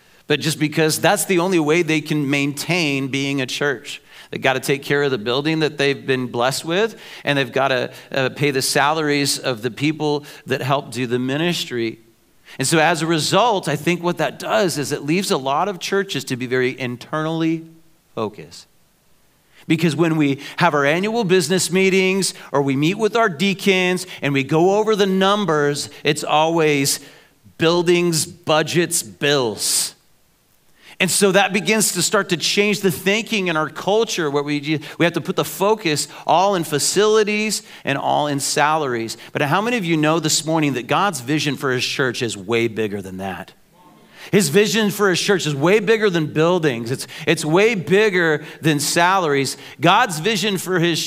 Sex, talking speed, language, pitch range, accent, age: male, 180 wpm, English, 145-185 Hz, American, 40-59